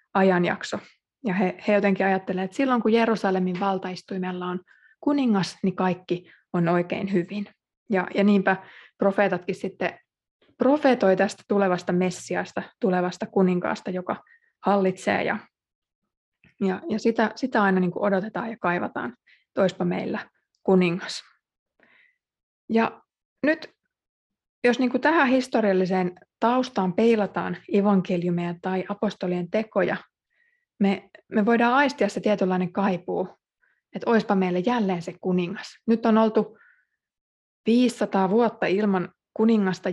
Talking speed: 115 wpm